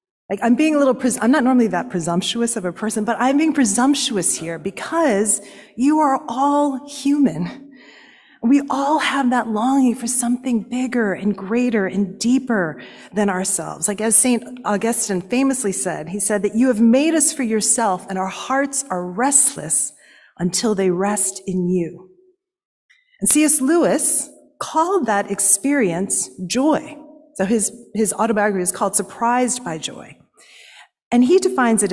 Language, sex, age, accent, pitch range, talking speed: English, female, 40-59, American, 205-290 Hz, 155 wpm